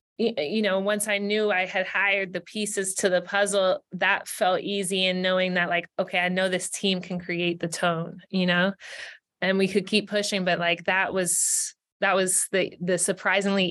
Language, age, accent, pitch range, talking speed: English, 20-39, American, 180-200 Hz, 195 wpm